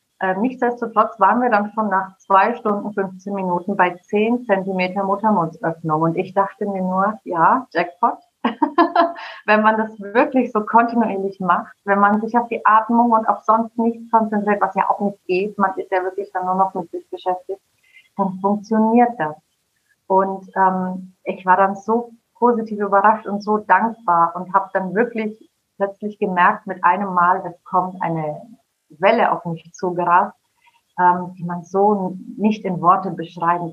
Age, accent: 30-49, German